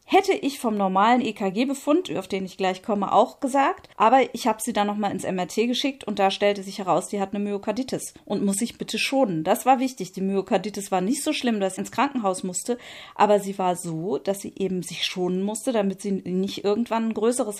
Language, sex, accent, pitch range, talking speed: German, female, German, 185-225 Hz, 220 wpm